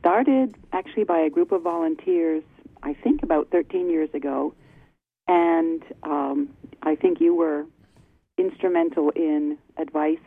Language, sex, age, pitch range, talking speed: English, female, 50-69, 140-165 Hz, 130 wpm